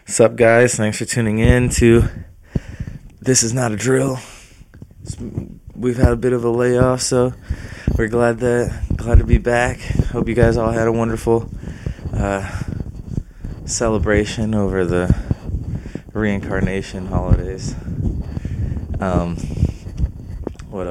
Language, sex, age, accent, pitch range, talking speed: English, male, 20-39, American, 95-115 Hz, 125 wpm